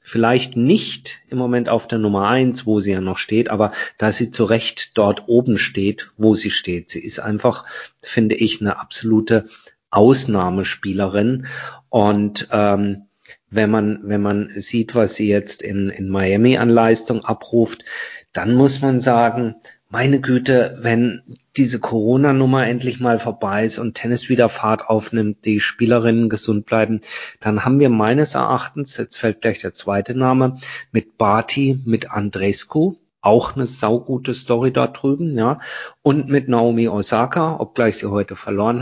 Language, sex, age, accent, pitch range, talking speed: German, male, 40-59, German, 105-125 Hz, 155 wpm